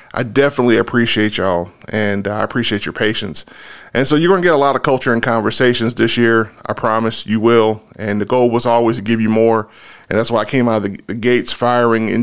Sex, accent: male, American